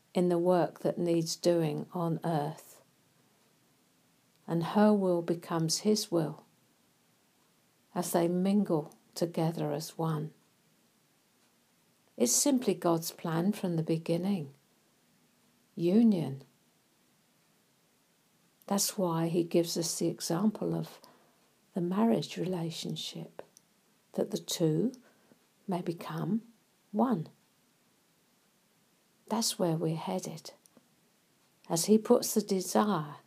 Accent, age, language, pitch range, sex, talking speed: British, 60-79, English, 160-195 Hz, female, 95 wpm